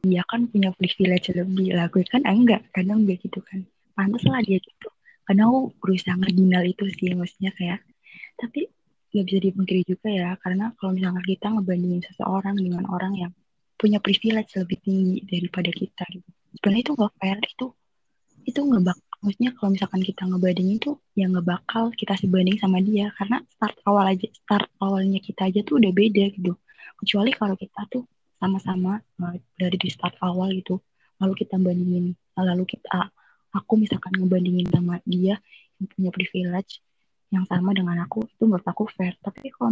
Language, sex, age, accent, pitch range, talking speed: Indonesian, female, 20-39, native, 185-210 Hz, 170 wpm